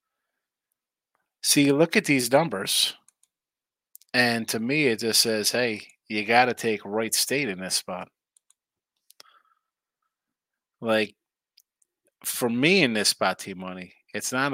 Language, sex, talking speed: English, male, 130 wpm